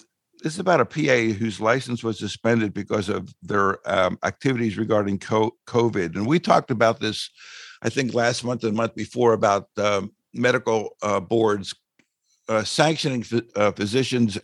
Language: English